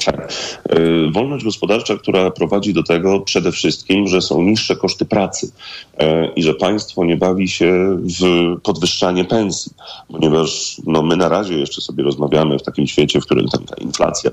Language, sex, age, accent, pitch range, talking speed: Polish, male, 40-59, native, 80-95 Hz, 160 wpm